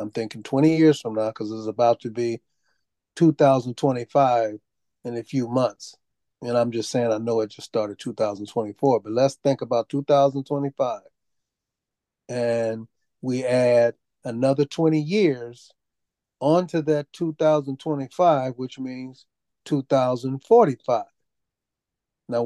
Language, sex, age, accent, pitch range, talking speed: English, male, 30-49, American, 120-150 Hz, 120 wpm